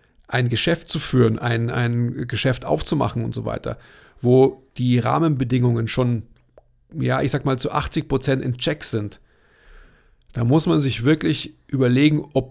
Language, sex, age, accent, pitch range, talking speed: German, male, 40-59, German, 120-150 Hz, 155 wpm